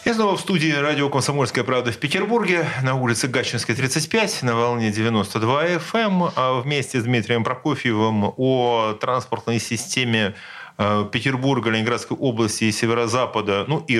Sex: male